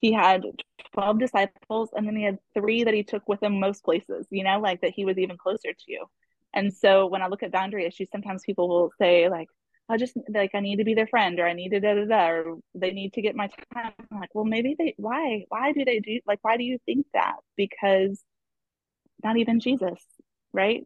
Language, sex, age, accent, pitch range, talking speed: English, female, 20-39, American, 180-220 Hz, 235 wpm